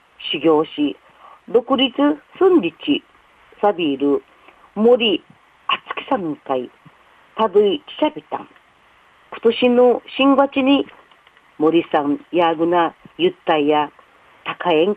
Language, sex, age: Japanese, female, 50-69